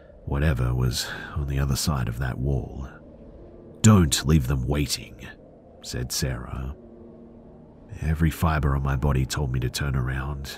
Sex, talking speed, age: male, 140 wpm, 40-59